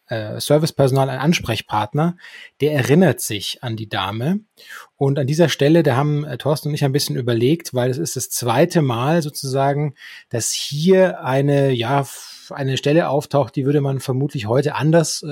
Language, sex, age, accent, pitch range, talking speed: German, male, 30-49, German, 130-160 Hz, 160 wpm